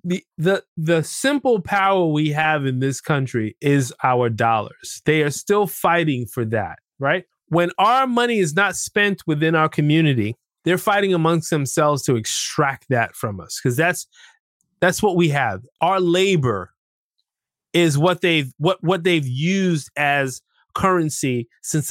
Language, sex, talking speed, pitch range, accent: English, male, 155 wpm, 130-175 Hz, American